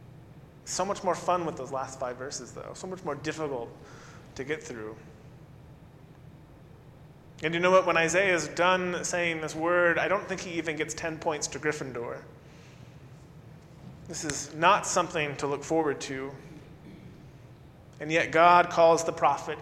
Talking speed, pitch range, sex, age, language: 160 wpm, 140-170 Hz, male, 30-49, English